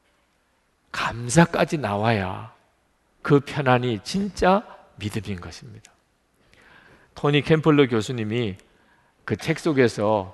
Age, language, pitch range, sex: 50-69, Korean, 120-185 Hz, male